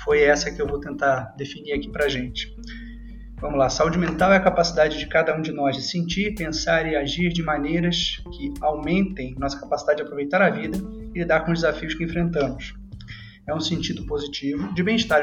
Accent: Brazilian